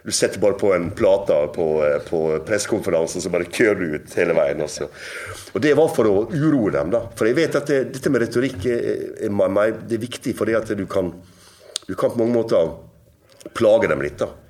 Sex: male